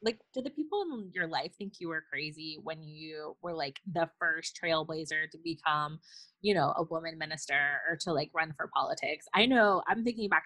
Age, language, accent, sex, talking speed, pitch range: 20-39, English, American, female, 205 wpm, 165-215 Hz